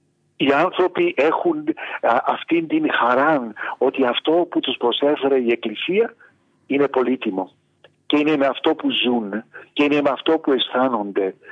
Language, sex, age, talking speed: Greek, male, 50-69, 140 wpm